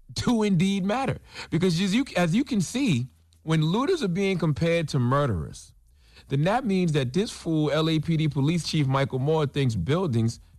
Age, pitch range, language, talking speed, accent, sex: 40-59, 110-170 Hz, English, 165 wpm, American, male